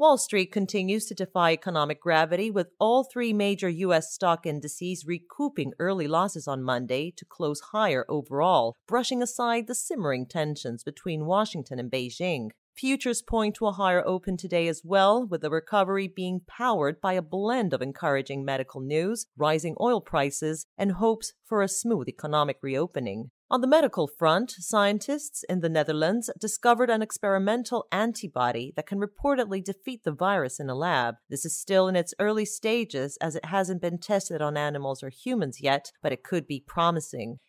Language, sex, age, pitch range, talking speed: English, female, 40-59, 150-220 Hz, 170 wpm